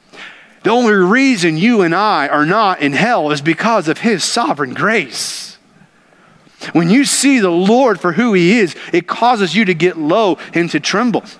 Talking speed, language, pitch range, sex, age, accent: 180 wpm, English, 170-225 Hz, male, 40-59, American